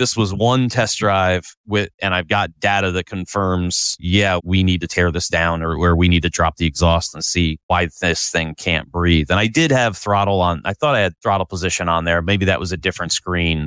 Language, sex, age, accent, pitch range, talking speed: English, male, 30-49, American, 90-110 Hz, 235 wpm